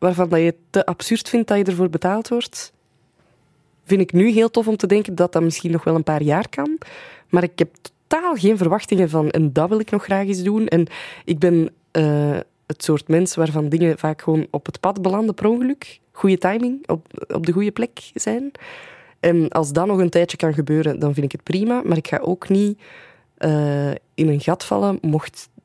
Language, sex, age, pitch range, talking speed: Dutch, female, 20-39, 155-200 Hz, 215 wpm